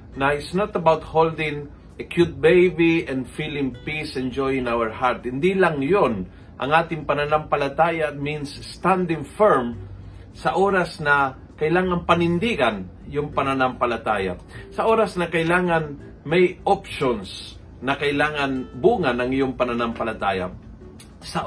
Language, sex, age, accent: Filipino, male, 40-59, native